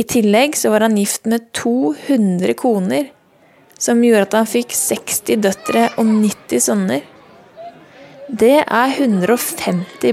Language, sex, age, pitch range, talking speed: English, female, 20-39, 210-265 Hz, 135 wpm